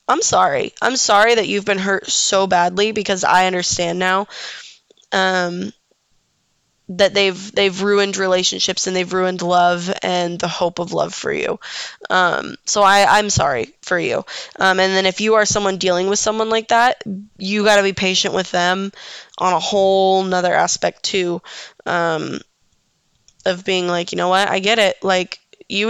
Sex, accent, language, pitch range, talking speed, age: female, American, English, 185-210 Hz, 175 wpm, 10-29